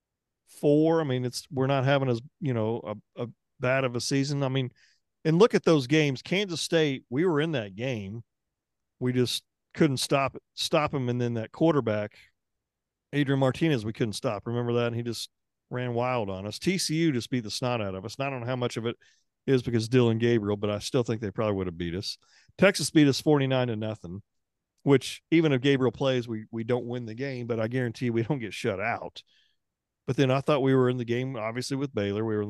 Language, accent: English, American